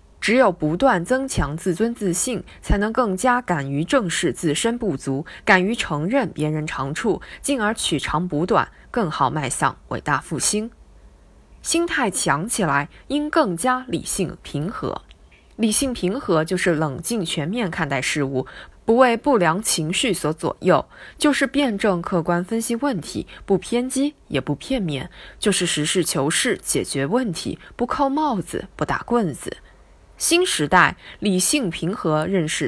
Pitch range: 150-235 Hz